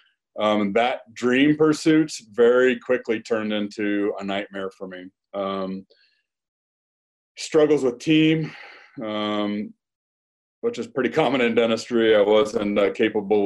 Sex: male